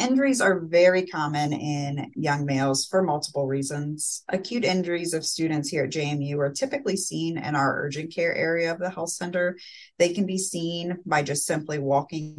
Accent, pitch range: American, 145-180 Hz